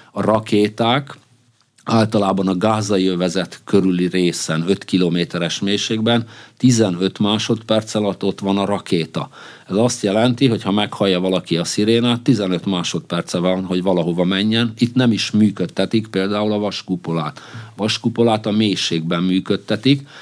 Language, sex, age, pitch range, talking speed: Hungarian, male, 50-69, 90-110 Hz, 135 wpm